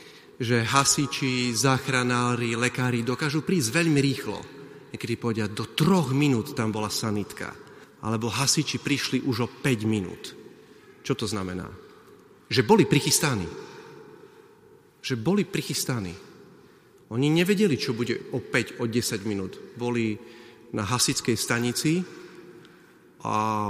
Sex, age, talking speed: male, 40-59, 115 wpm